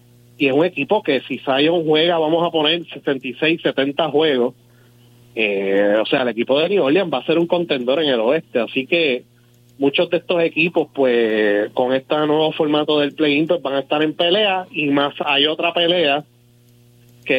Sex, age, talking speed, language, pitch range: male, 30-49, 190 wpm, Spanish, 130-160 Hz